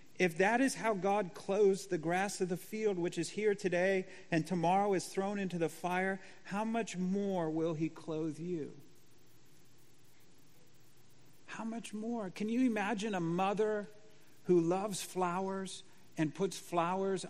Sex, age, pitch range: male, 50-69, 165-215 Hz